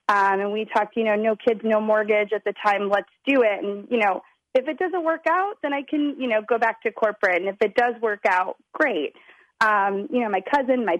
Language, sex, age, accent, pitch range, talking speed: English, female, 30-49, American, 210-250 Hz, 250 wpm